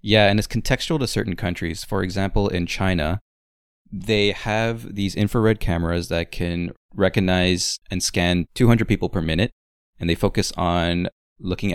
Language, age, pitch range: English, 20-39, 85-105 Hz